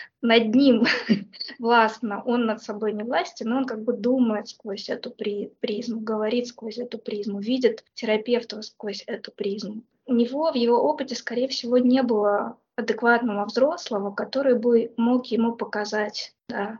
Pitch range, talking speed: 220-245 Hz, 155 wpm